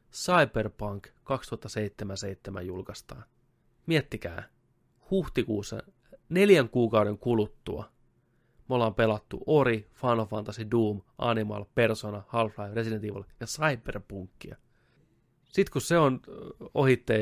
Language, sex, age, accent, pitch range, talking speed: Finnish, male, 30-49, native, 105-120 Hz, 95 wpm